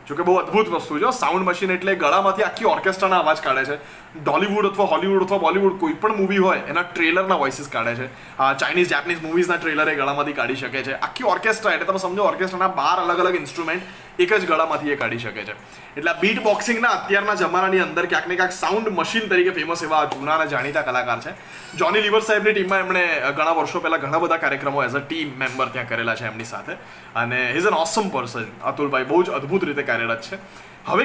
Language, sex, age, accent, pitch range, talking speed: Gujarati, male, 20-39, native, 150-205 Hz, 205 wpm